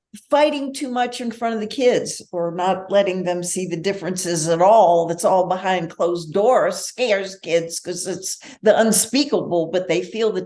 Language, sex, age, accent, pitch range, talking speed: English, female, 60-79, American, 190-245 Hz, 185 wpm